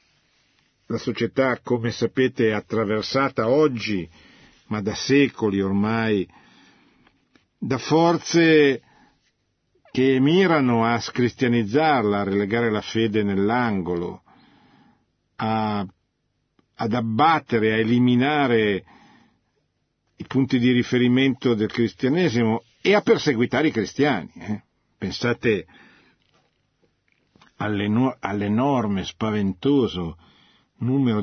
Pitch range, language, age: 105-135 Hz, Italian, 50-69